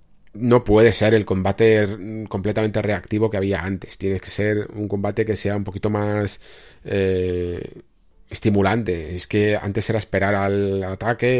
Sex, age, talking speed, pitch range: male, 30-49, 155 wpm, 100-115 Hz